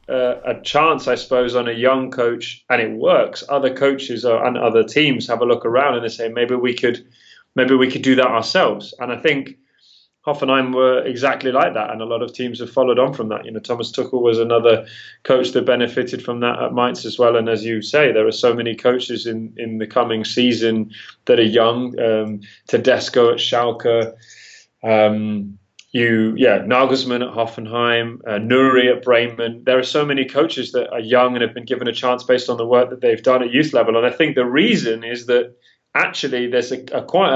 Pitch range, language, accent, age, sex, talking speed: 115-135 Hz, English, British, 20-39, male, 210 wpm